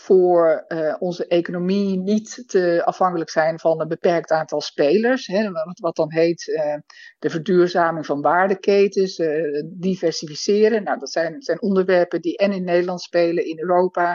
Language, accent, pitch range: Dutch, Dutch, 165-205 Hz